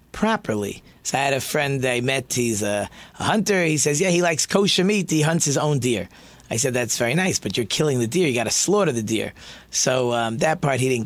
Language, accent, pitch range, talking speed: English, American, 130-190 Hz, 250 wpm